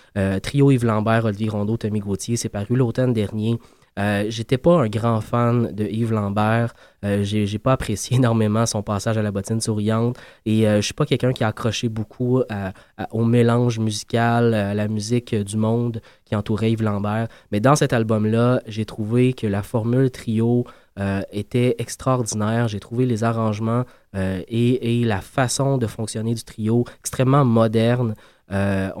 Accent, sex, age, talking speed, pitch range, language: Canadian, male, 20-39, 180 wpm, 105-120 Hz, French